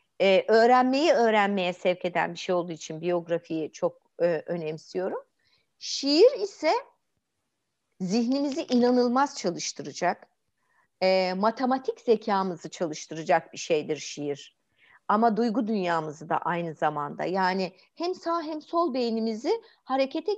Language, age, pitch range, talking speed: Turkish, 50-69, 180-270 Hz, 105 wpm